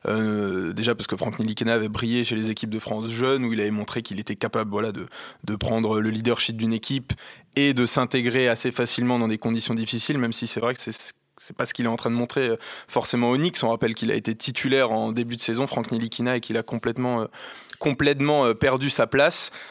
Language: French